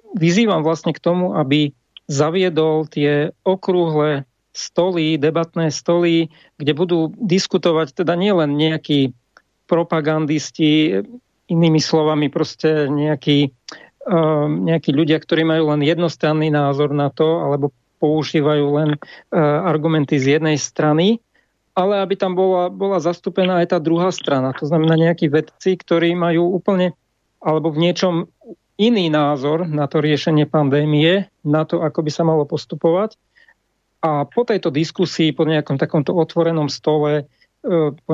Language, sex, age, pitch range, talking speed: English, male, 40-59, 150-175 Hz, 130 wpm